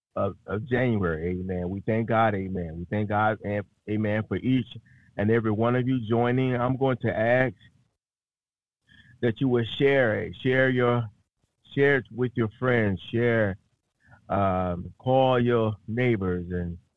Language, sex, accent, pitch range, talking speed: English, male, American, 105-120 Hz, 150 wpm